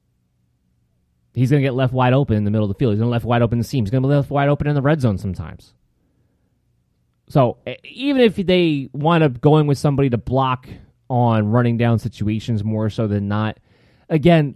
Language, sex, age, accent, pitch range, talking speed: English, male, 20-39, American, 100-145 Hz, 225 wpm